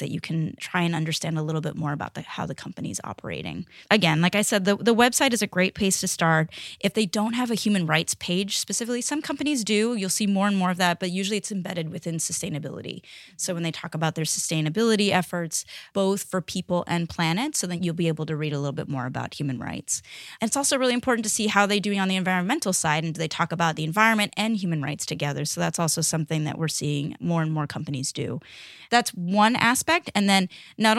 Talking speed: 240 wpm